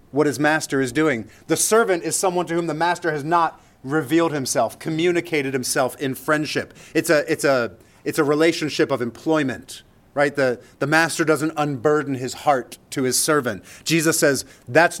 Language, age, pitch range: English, 30-49, 110-155 Hz